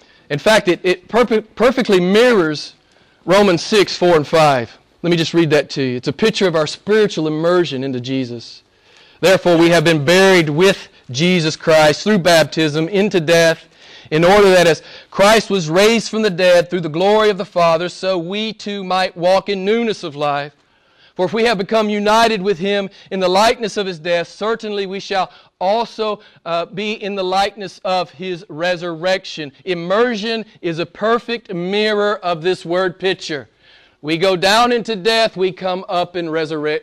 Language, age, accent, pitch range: English, 40-59, American, 160-205 Hz